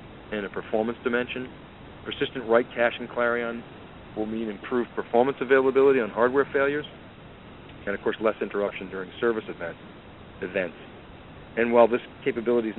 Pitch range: 110-130 Hz